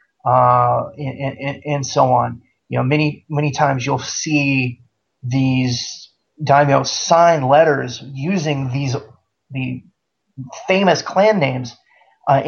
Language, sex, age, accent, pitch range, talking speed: English, male, 30-49, American, 125-150 Hz, 115 wpm